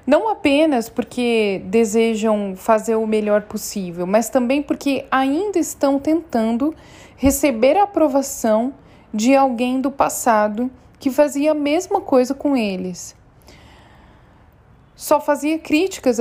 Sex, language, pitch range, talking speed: female, Portuguese, 205-265 Hz, 115 wpm